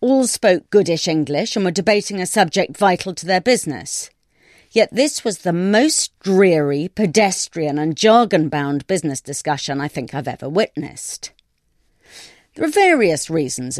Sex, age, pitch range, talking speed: female, 40-59, 155-210 Hz, 145 wpm